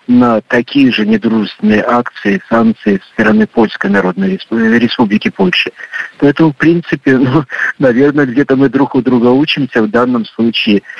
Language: Russian